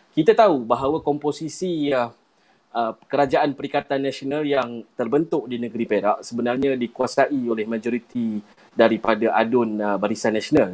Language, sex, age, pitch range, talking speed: Malay, male, 20-39, 115-145 Hz, 130 wpm